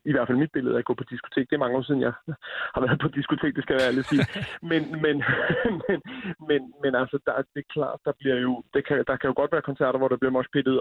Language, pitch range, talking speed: Danish, 125-140 Hz, 270 wpm